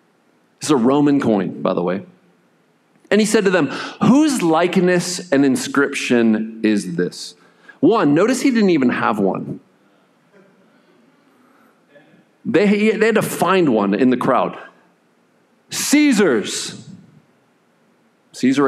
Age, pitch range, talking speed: 40-59, 110-175 Hz, 115 wpm